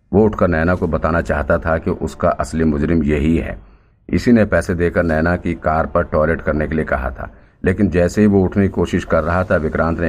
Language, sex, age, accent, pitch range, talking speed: Hindi, male, 50-69, native, 80-95 Hz, 230 wpm